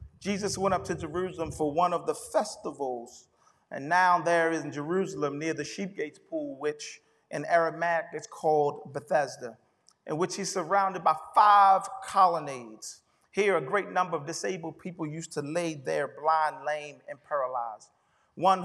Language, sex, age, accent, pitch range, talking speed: English, male, 40-59, American, 150-180 Hz, 155 wpm